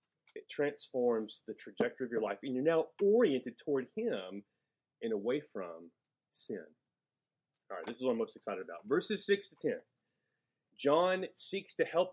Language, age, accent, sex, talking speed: English, 30-49, American, male, 170 wpm